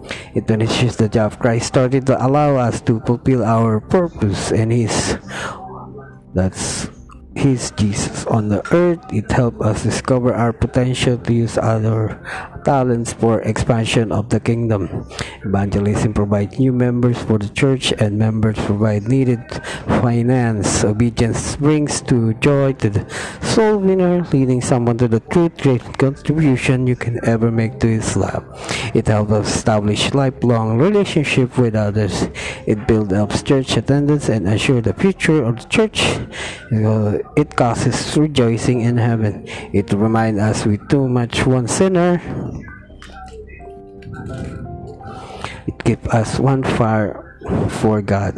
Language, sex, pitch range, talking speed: Filipino, male, 110-135 Hz, 135 wpm